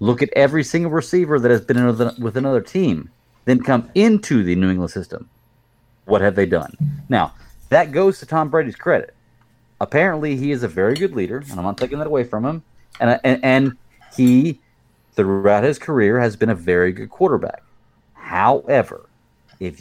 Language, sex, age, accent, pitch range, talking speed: English, male, 30-49, American, 110-140 Hz, 180 wpm